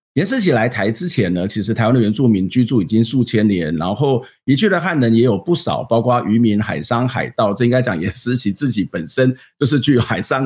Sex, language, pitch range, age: male, Chinese, 115-155 Hz, 50-69